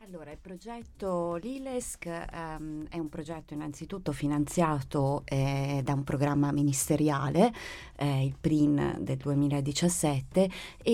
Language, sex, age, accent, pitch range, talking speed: Italian, female, 30-49, native, 150-180 Hz, 105 wpm